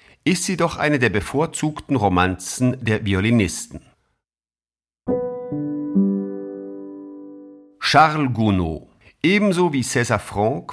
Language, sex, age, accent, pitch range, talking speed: German, male, 50-69, German, 100-145 Hz, 85 wpm